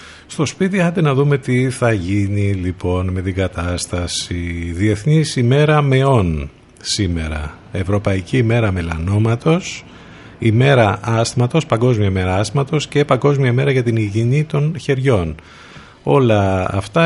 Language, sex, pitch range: Greek, male, 95-125 Hz